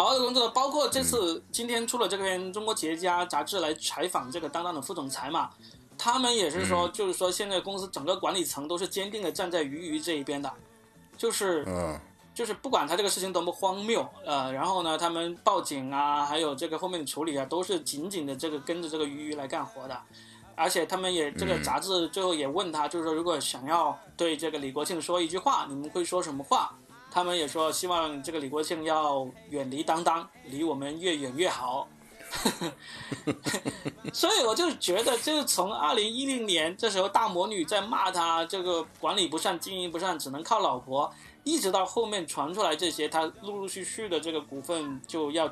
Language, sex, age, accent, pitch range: Chinese, male, 20-39, native, 150-190 Hz